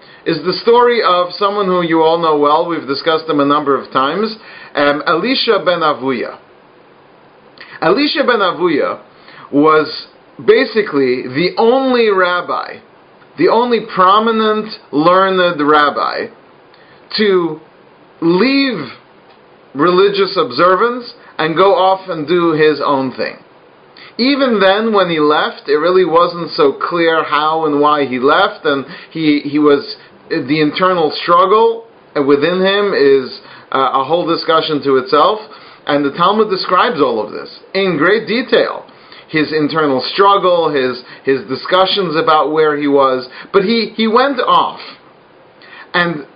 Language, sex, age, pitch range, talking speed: English, male, 40-59, 155-220 Hz, 130 wpm